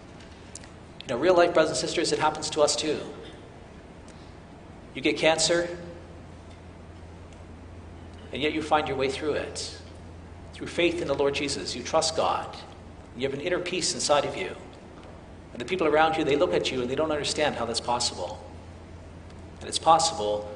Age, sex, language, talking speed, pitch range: 50-69, male, English, 170 wpm, 85-140 Hz